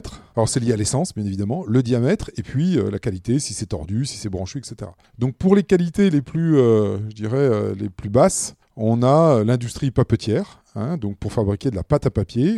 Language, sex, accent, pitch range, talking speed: French, male, French, 105-140 Hz, 225 wpm